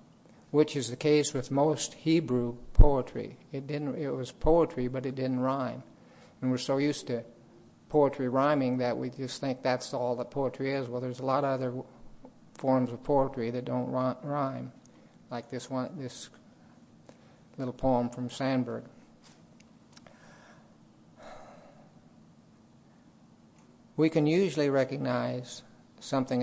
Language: English